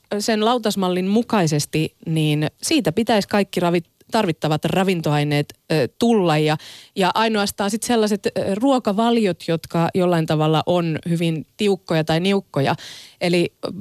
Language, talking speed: Finnish, 115 wpm